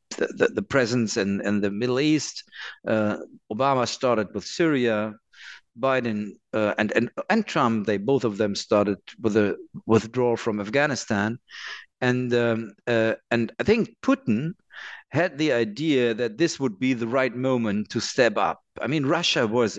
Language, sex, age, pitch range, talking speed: English, male, 50-69, 115-150 Hz, 160 wpm